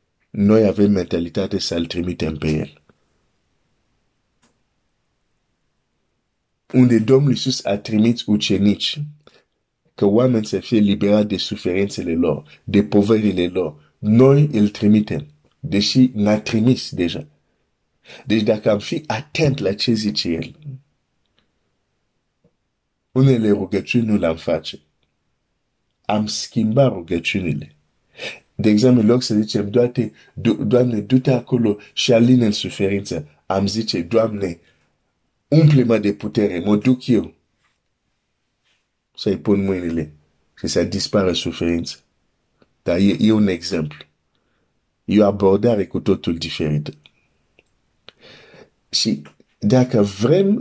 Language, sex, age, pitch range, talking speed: Romanian, male, 50-69, 95-120 Hz, 90 wpm